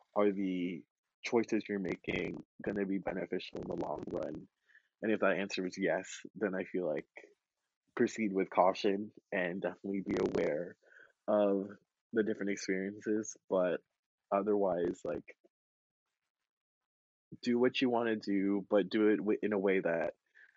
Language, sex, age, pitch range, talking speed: English, male, 20-39, 95-105 Hz, 145 wpm